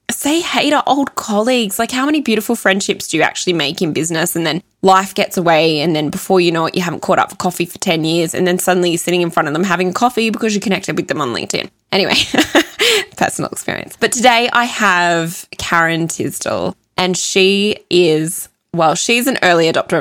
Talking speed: 215 wpm